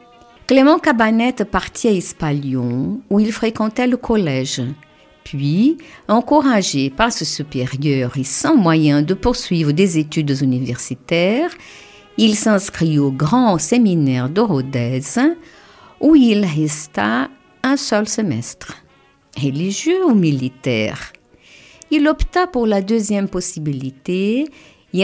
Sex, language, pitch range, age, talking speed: female, French, 150-230 Hz, 50-69, 110 wpm